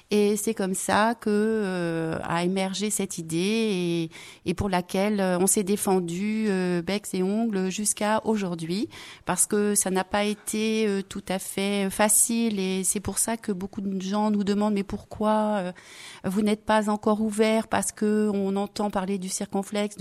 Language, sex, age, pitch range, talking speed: French, female, 30-49, 185-210 Hz, 180 wpm